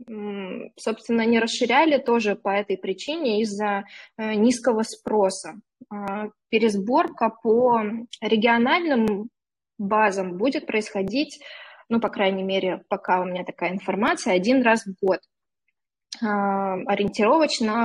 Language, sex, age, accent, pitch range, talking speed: Russian, female, 20-39, native, 205-245 Hz, 100 wpm